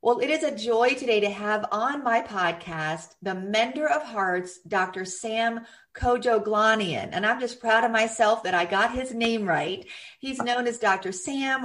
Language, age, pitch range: English, 40-59, 180-230 Hz